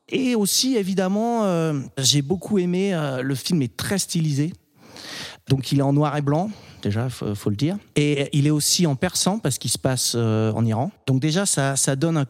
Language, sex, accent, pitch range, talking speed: French, male, French, 140-190 Hz, 215 wpm